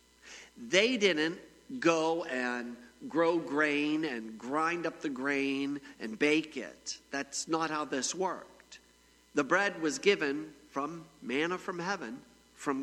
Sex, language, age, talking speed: male, English, 50-69, 130 wpm